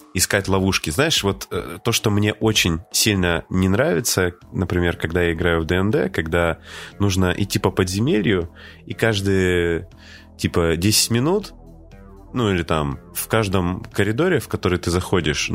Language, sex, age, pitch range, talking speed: Russian, male, 20-39, 85-105 Hz, 145 wpm